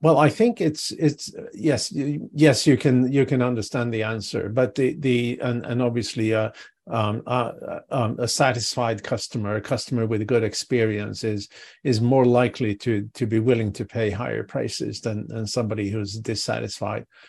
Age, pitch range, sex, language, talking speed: 50-69, 110-130 Hz, male, English, 175 wpm